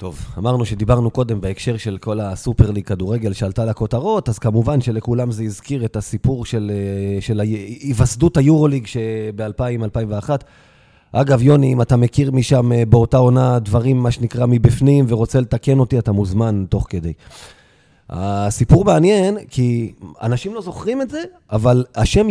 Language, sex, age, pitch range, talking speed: Hebrew, male, 30-49, 110-150 Hz, 140 wpm